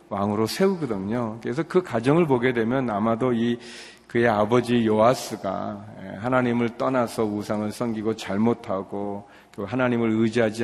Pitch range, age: 105-125 Hz, 40-59